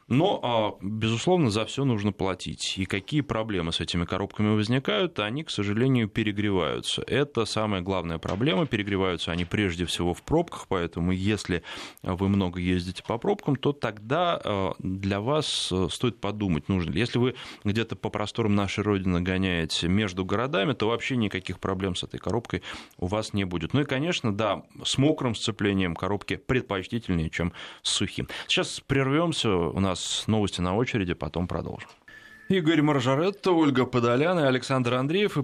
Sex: male